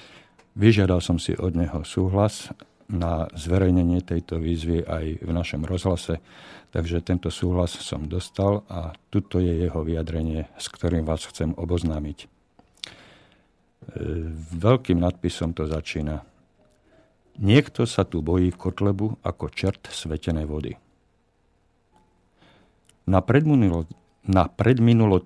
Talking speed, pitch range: 110 wpm, 80-100 Hz